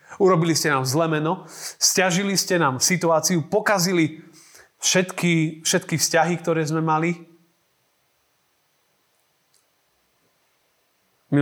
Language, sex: Slovak, male